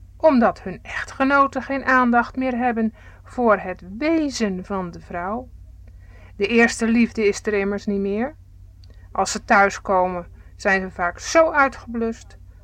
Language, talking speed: Dutch, 140 wpm